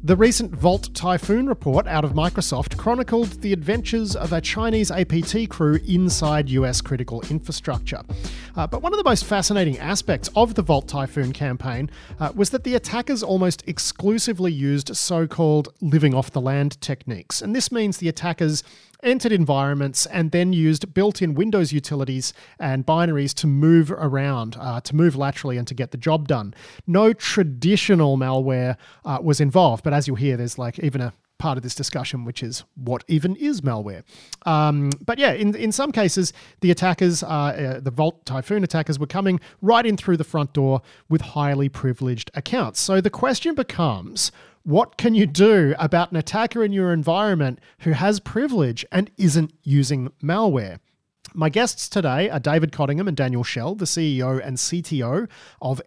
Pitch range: 140-190 Hz